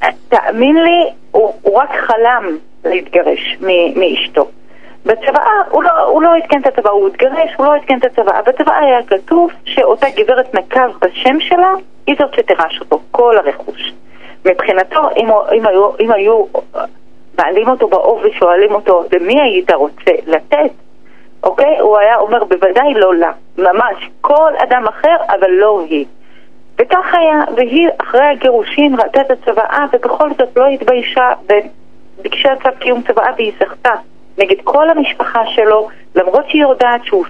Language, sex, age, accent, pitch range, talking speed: Hebrew, female, 40-59, native, 200-295 Hz, 150 wpm